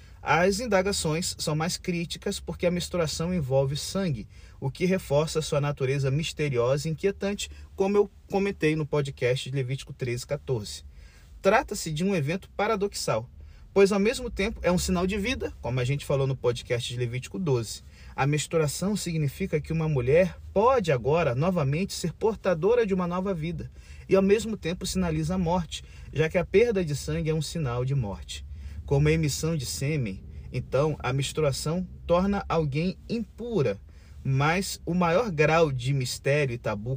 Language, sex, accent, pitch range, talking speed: Portuguese, male, Brazilian, 130-175 Hz, 165 wpm